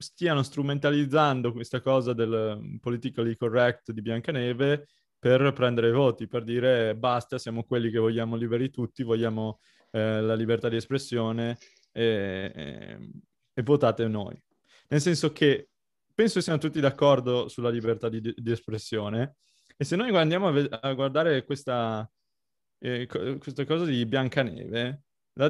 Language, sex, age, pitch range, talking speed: Italian, male, 20-39, 120-145 Hz, 135 wpm